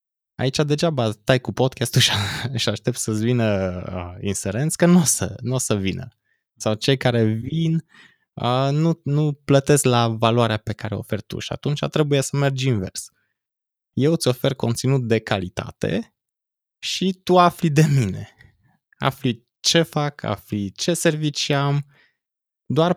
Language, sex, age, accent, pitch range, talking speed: Romanian, male, 20-39, native, 110-145 Hz, 145 wpm